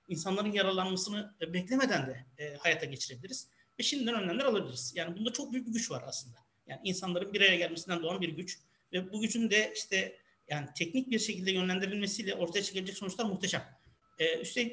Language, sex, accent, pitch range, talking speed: Turkish, male, native, 160-210 Hz, 170 wpm